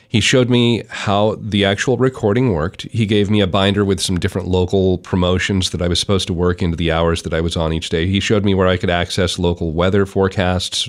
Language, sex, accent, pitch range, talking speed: English, male, American, 95-120 Hz, 235 wpm